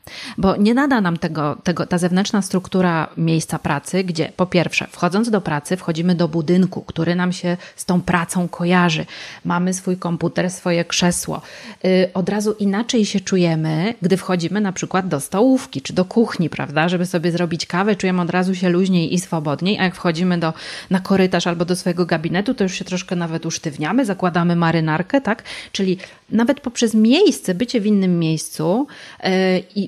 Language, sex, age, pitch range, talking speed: Polish, female, 30-49, 175-215 Hz, 175 wpm